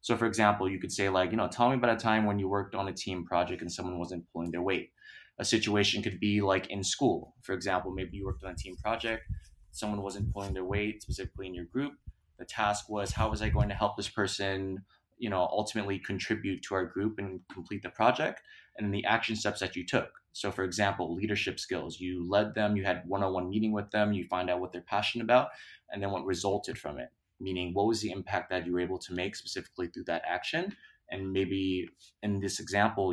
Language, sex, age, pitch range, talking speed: English, male, 20-39, 95-110 Hz, 230 wpm